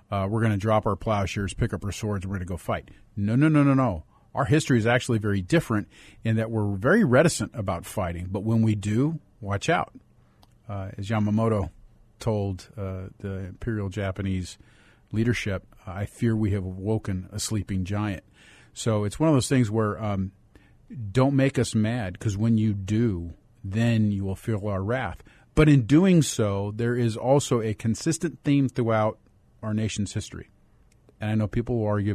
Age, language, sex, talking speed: 40-59, English, male, 185 wpm